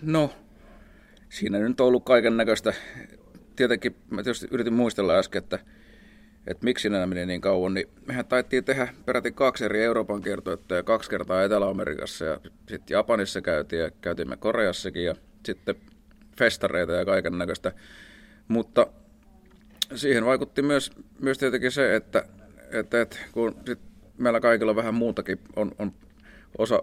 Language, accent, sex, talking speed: Finnish, native, male, 140 wpm